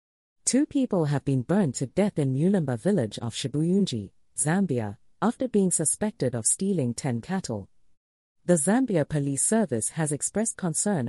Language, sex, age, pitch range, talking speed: English, female, 40-59, 120-190 Hz, 145 wpm